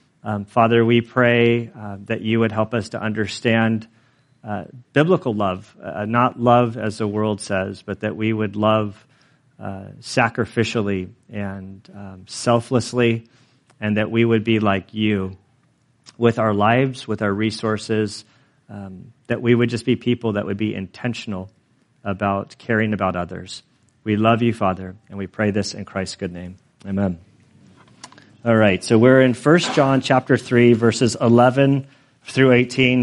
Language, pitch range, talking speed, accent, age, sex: English, 105-130 Hz, 155 wpm, American, 40-59, male